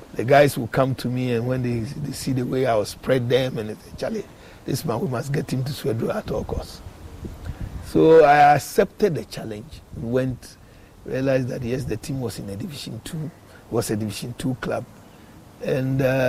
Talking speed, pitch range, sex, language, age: 190 wpm, 105-140 Hz, male, English, 50-69